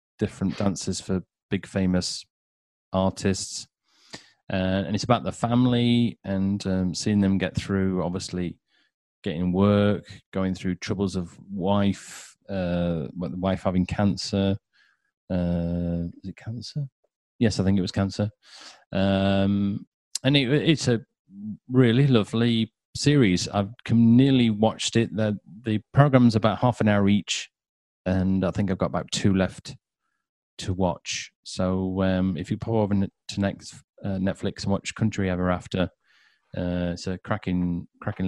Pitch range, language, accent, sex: 95-115 Hz, English, British, male